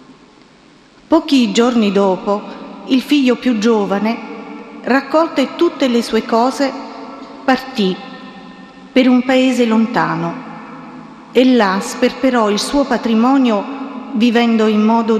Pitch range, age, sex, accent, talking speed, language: 220-270 Hz, 40-59, female, native, 105 wpm, Italian